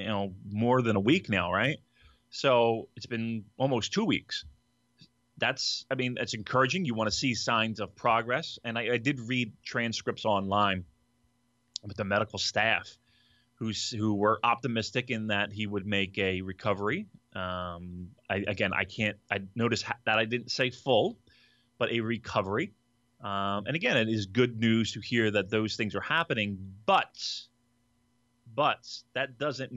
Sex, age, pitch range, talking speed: male, 30-49, 100-120 Hz, 165 wpm